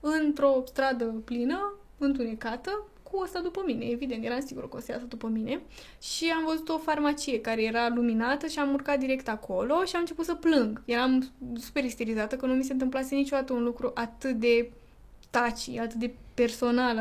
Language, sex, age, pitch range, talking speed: Romanian, female, 10-29, 235-275 Hz, 185 wpm